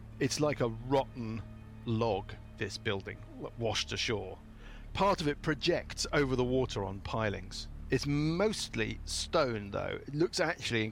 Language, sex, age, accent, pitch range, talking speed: English, male, 50-69, British, 100-130 Hz, 145 wpm